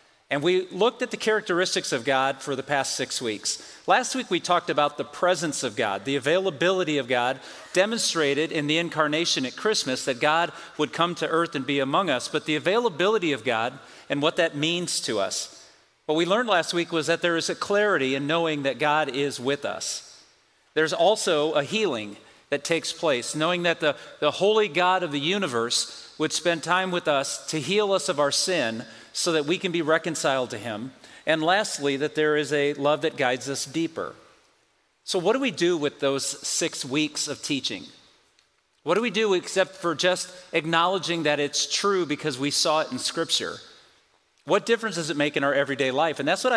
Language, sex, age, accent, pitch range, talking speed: English, male, 40-59, American, 145-180 Hz, 200 wpm